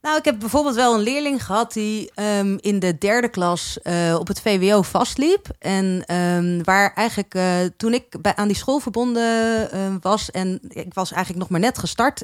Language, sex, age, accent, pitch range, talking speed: Dutch, female, 30-49, Dutch, 185-235 Hz, 200 wpm